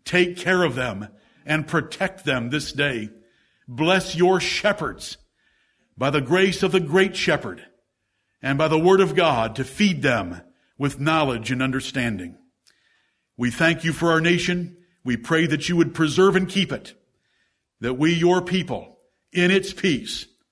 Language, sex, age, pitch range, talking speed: English, male, 60-79, 140-185 Hz, 160 wpm